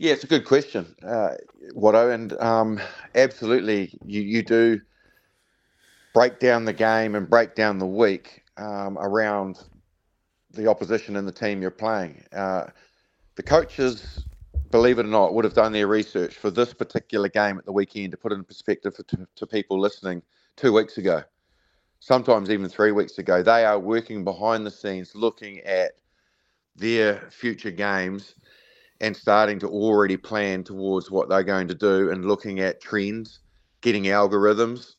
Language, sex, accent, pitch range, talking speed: English, male, Australian, 95-115 Hz, 160 wpm